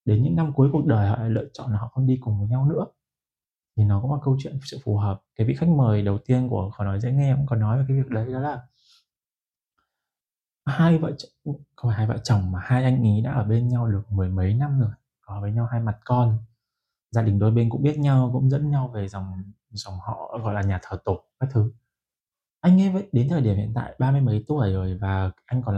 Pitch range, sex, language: 105-135 Hz, male, Vietnamese